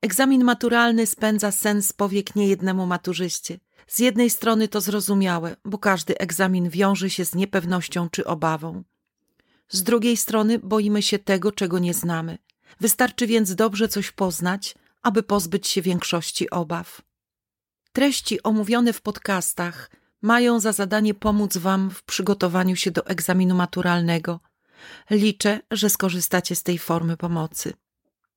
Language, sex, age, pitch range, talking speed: Polish, female, 40-59, 180-215 Hz, 130 wpm